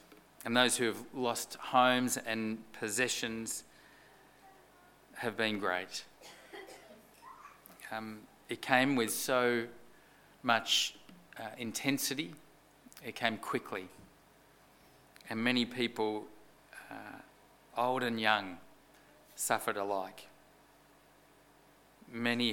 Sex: male